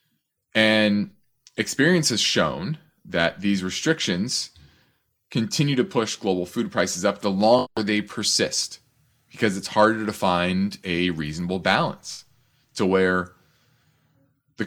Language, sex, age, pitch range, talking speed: English, male, 30-49, 95-135 Hz, 120 wpm